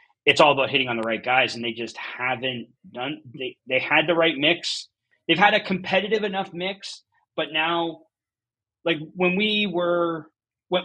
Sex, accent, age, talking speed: male, American, 30-49, 175 wpm